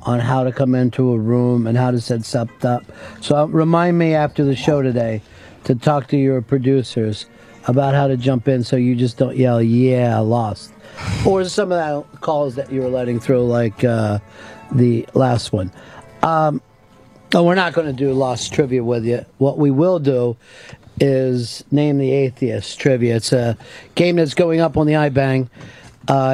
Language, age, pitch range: English, 50-69, 125-150 Hz